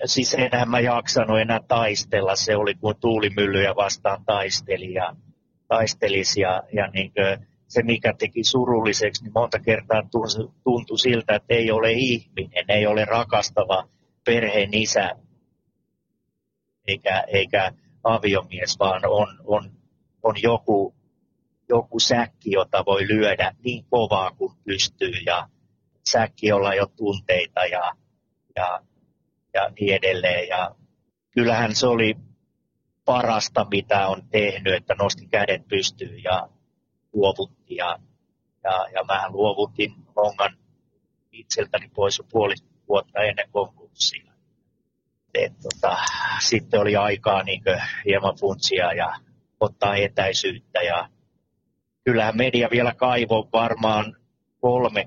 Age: 30-49